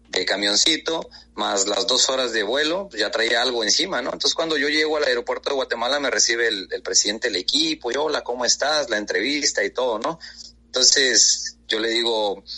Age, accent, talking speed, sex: 30-49, Mexican, 190 wpm, male